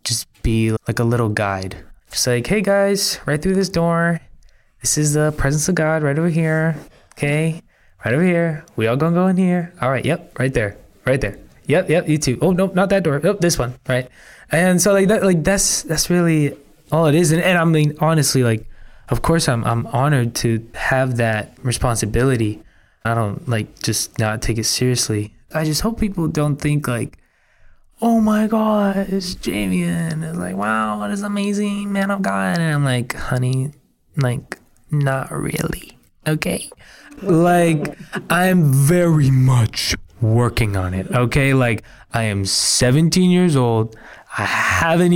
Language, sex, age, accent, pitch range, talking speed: English, male, 20-39, American, 110-165 Hz, 175 wpm